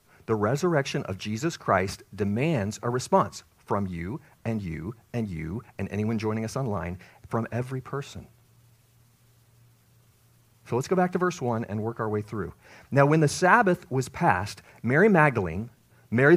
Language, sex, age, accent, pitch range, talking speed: English, male, 40-59, American, 115-160 Hz, 160 wpm